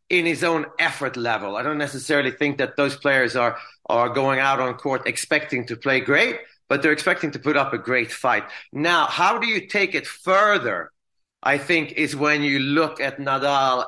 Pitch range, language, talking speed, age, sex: 135-160 Hz, English, 200 wpm, 30-49, male